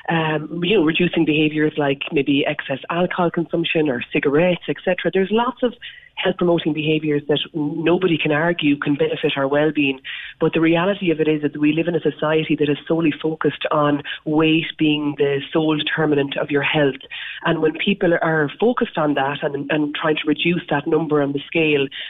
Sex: female